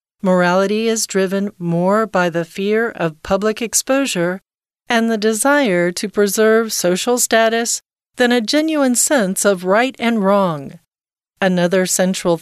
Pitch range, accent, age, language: 185-235 Hz, American, 40-59, Chinese